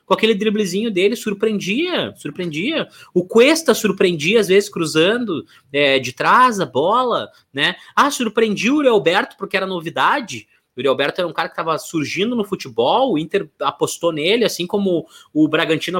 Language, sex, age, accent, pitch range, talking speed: Portuguese, male, 20-39, Brazilian, 165-255 Hz, 155 wpm